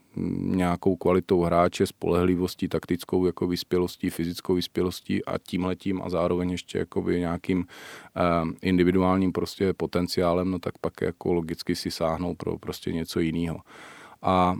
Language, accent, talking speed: Czech, native, 140 wpm